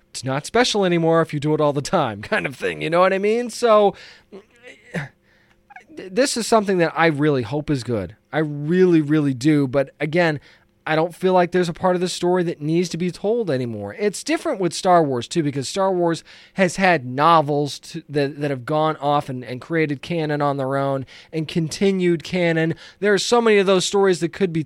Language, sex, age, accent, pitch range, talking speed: English, male, 20-39, American, 150-200 Hz, 215 wpm